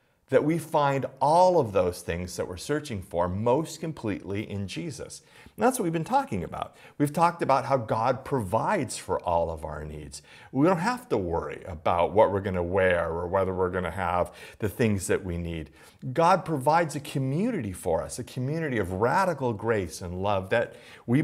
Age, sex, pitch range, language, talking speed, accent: 40-59, male, 105-150 Hz, English, 200 wpm, American